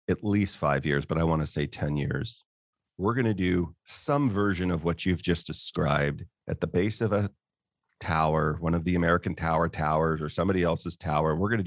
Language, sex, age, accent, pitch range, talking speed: English, male, 40-59, American, 80-100 Hz, 210 wpm